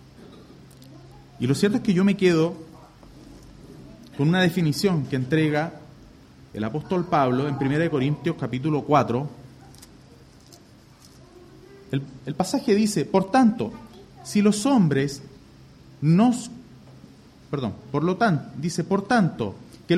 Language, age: English, 30-49